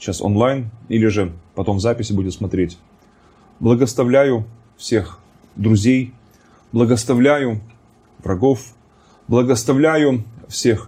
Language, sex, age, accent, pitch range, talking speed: Russian, male, 20-39, native, 110-140 Hz, 90 wpm